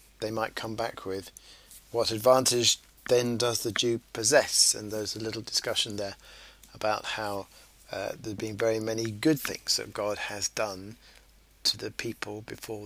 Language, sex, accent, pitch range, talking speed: English, male, British, 105-130 Hz, 165 wpm